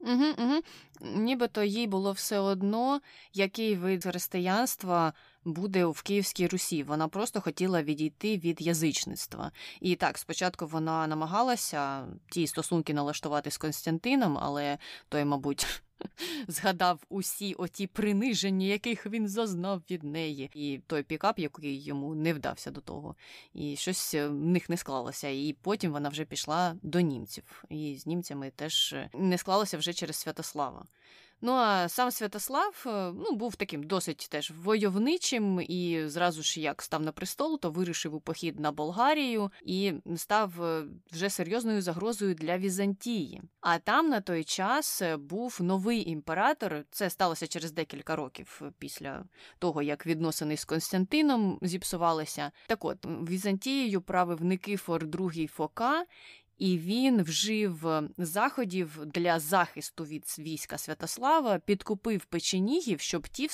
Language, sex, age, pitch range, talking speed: Ukrainian, female, 20-39, 155-205 Hz, 140 wpm